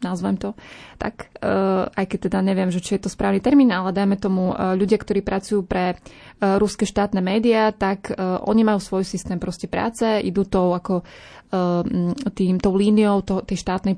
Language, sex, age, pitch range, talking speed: Slovak, female, 20-39, 185-210 Hz, 185 wpm